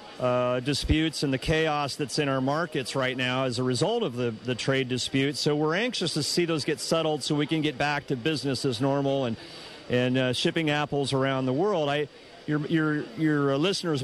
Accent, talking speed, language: American, 210 wpm, English